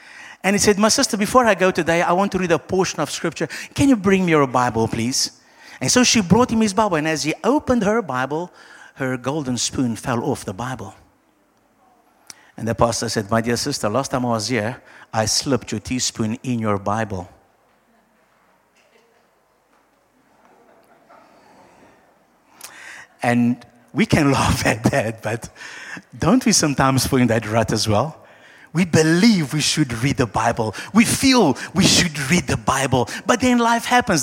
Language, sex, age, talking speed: English, male, 50-69, 170 wpm